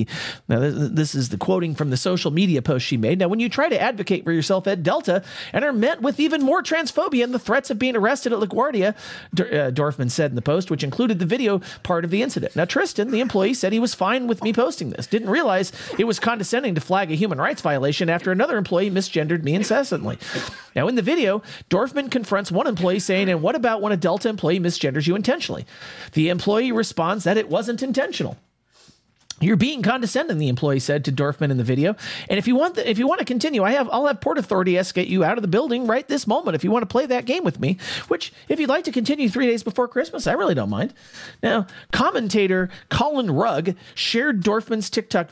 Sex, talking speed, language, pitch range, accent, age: male, 230 wpm, English, 160-240 Hz, American, 40-59